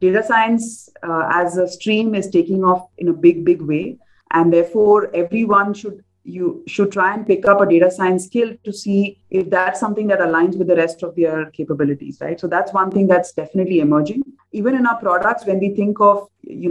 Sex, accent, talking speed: female, Indian, 210 wpm